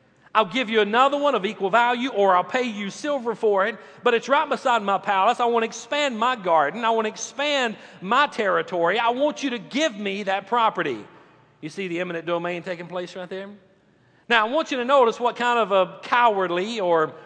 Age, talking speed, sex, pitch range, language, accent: 40-59, 215 wpm, male, 180-255 Hz, English, American